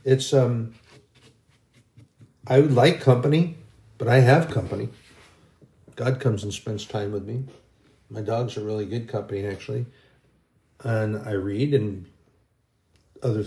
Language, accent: English, American